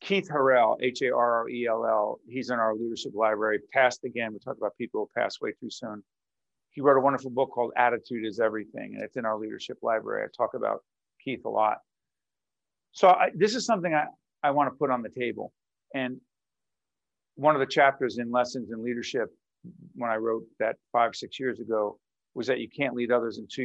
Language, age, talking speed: English, 50-69, 195 wpm